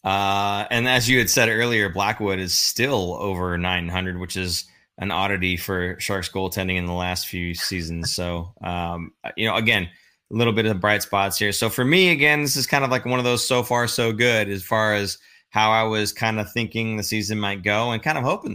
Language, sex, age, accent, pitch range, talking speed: English, male, 20-39, American, 95-120 Hz, 225 wpm